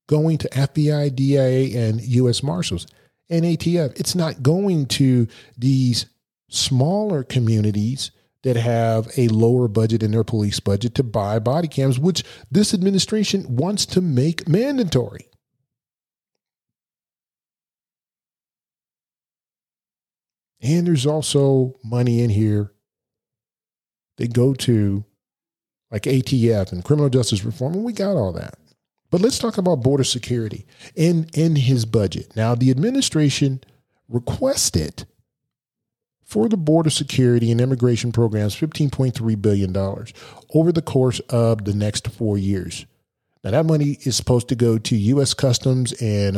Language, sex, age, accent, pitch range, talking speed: English, male, 40-59, American, 115-150 Hz, 125 wpm